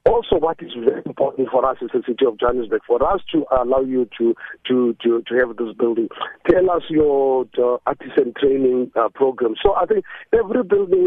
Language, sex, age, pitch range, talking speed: English, male, 50-69, 125-180 Hz, 200 wpm